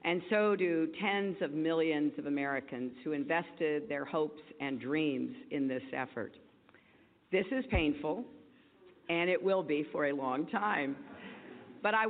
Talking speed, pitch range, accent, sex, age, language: 150 wpm, 150-210 Hz, American, female, 50-69, English